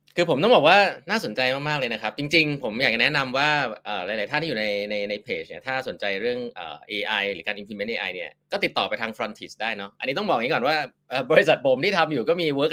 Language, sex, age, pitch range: English, male, 20-39, 105-165 Hz